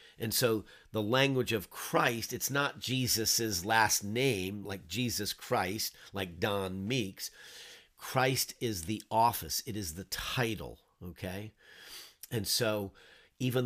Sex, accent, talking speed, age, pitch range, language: male, American, 125 wpm, 50-69, 100-125 Hz, English